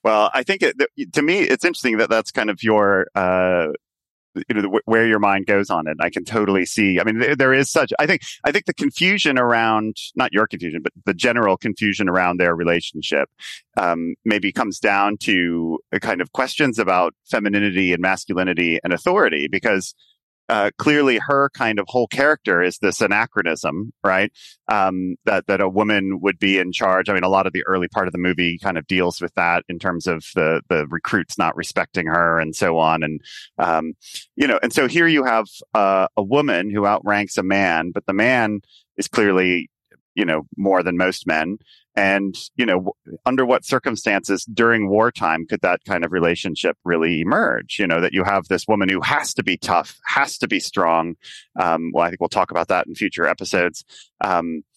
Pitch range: 85-105 Hz